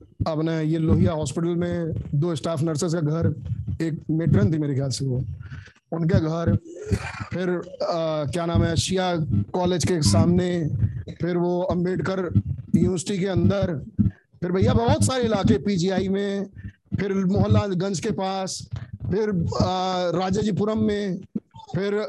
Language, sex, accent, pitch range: Hindi, male, native, 130-190 Hz